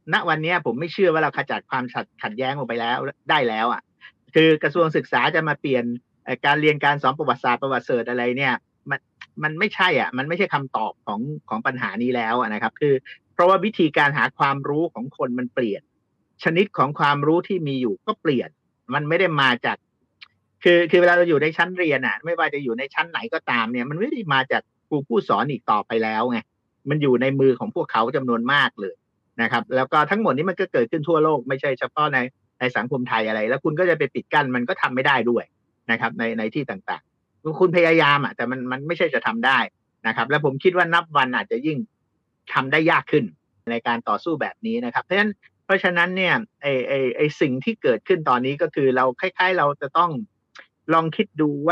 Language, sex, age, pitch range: Thai, male, 50-69, 125-170 Hz